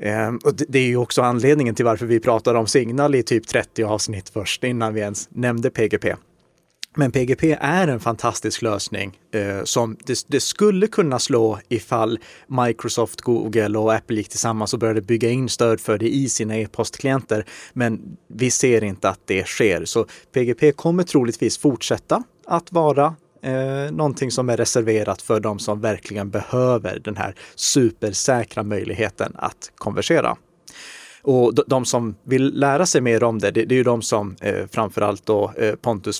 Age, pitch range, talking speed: 30-49, 110-130 Hz, 165 wpm